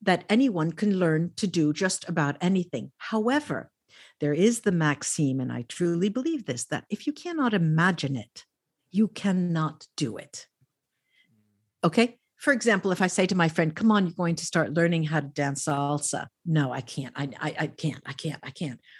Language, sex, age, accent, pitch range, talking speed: English, female, 50-69, American, 155-225 Hz, 190 wpm